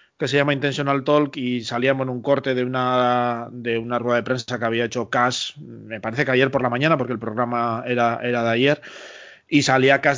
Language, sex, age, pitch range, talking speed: Spanish, male, 30-49, 125-140 Hz, 225 wpm